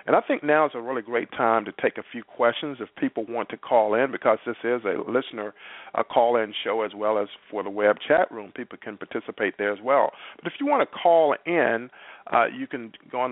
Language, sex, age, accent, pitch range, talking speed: English, male, 50-69, American, 110-130 Hz, 245 wpm